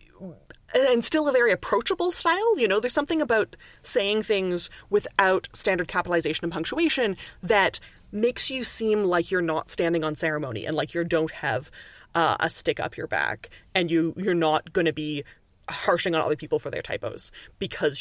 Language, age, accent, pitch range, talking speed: English, 30-49, American, 165-220 Hz, 175 wpm